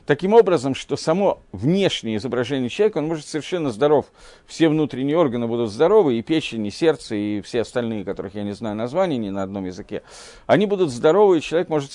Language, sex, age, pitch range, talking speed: Russian, male, 50-69, 120-165 Hz, 190 wpm